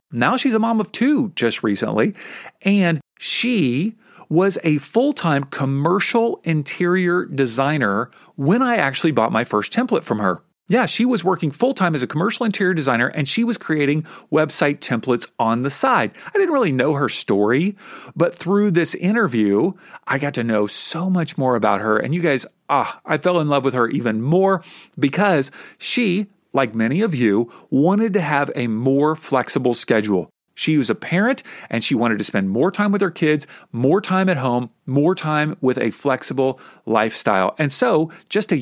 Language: English